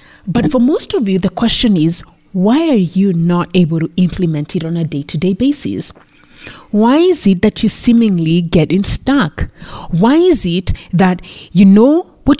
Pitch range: 170-230 Hz